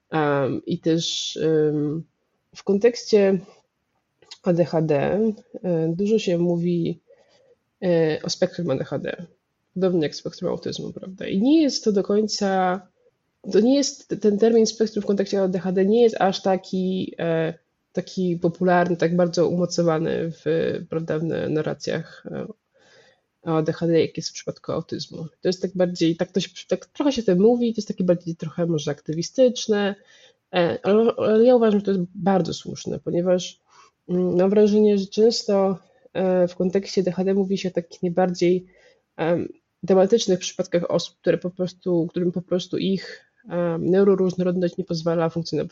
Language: Polish